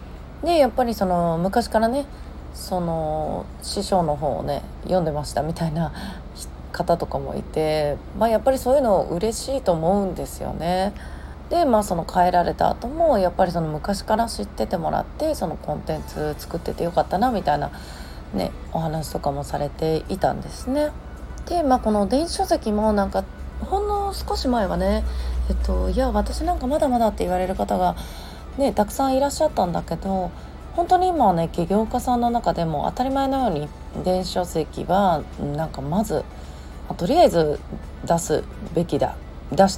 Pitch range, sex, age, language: 160-255 Hz, female, 30-49, Japanese